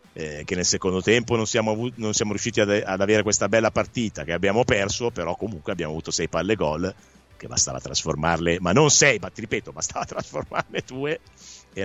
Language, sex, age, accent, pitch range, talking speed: Italian, male, 50-69, native, 95-145 Hz, 205 wpm